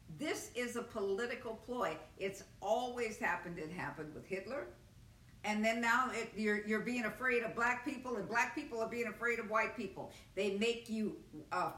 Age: 50-69